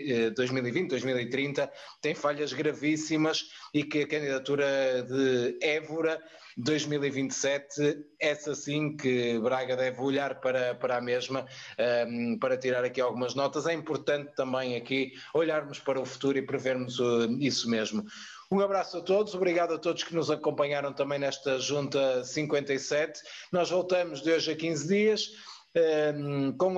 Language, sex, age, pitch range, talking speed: Portuguese, male, 20-39, 130-155 Hz, 135 wpm